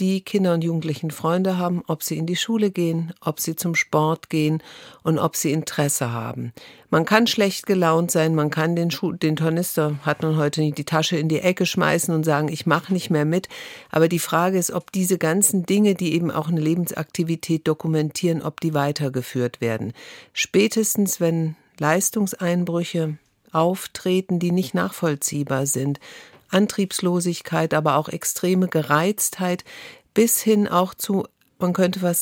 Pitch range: 155-185 Hz